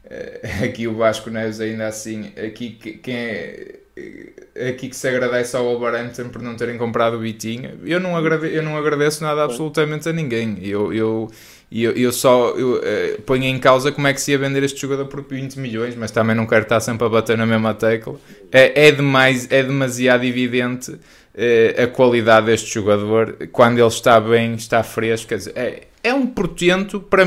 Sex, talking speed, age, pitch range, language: male, 165 wpm, 20-39, 115-145 Hz, Portuguese